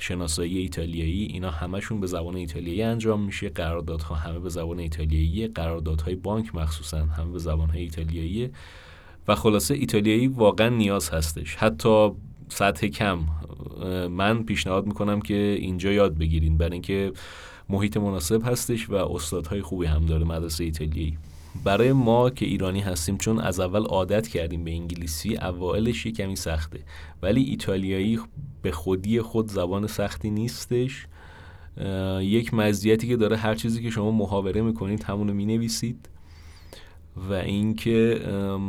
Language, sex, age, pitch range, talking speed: Persian, male, 30-49, 85-105 Hz, 135 wpm